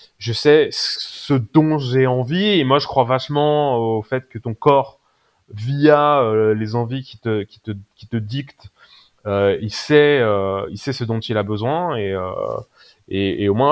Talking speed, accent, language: 190 wpm, French, French